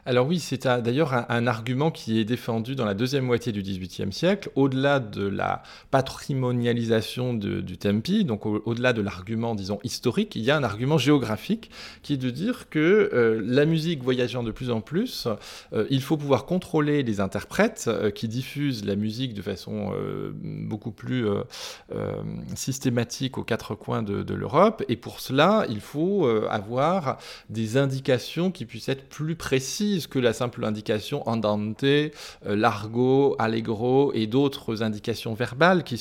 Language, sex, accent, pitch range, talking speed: French, male, French, 110-145 Hz, 175 wpm